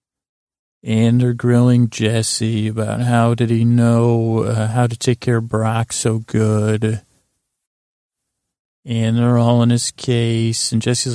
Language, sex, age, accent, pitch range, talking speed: English, male, 40-59, American, 115-125 Hz, 140 wpm